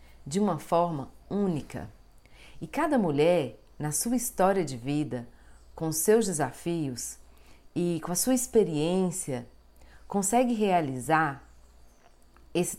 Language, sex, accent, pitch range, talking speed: Portuguese, female, Brazilian, 130-180 Hz, 110 wpm